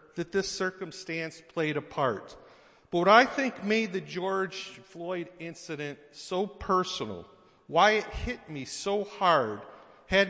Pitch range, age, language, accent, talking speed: 130-195 Hz, 50-69, English, American, 140 wpm